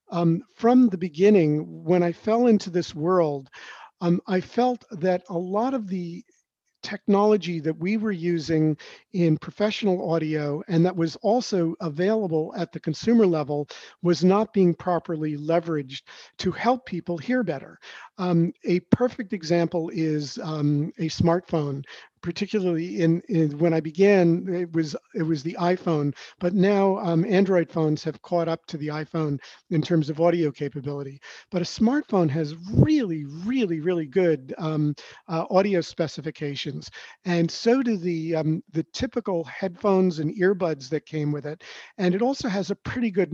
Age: 50-69